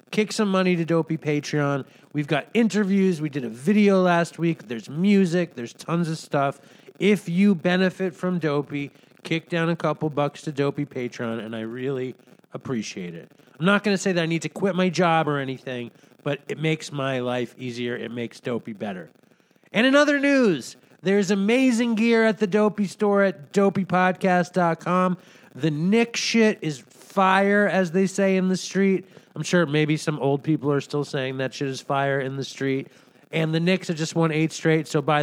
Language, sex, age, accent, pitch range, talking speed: English, male, 30-49, American, 145-185 Hz, 190 wpm